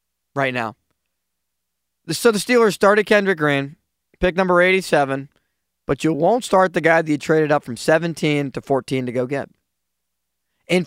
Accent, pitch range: American, 105-175 Hz